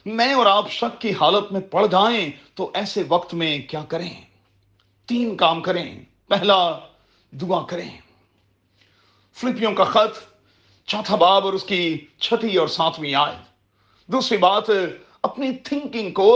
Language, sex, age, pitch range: Urdu, male, 40-59, 125-205 Hz